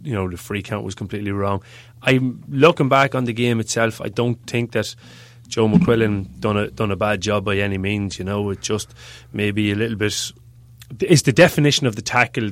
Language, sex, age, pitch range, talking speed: English, male, 20-39, 105-120 Hz, 210 wpm